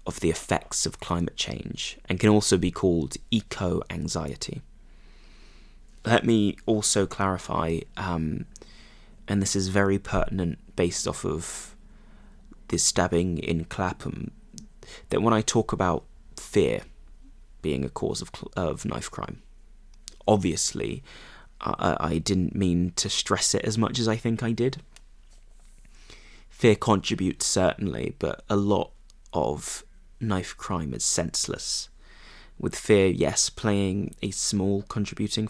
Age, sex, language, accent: 20-39, male, English, British